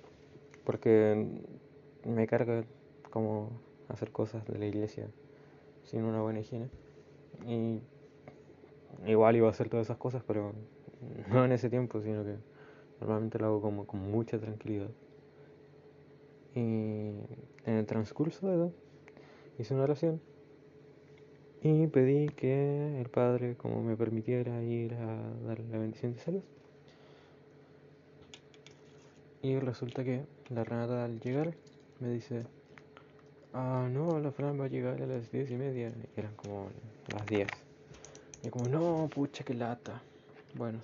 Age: 20-39